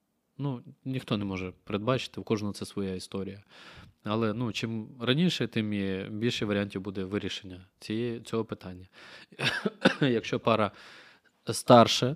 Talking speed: 125 wpm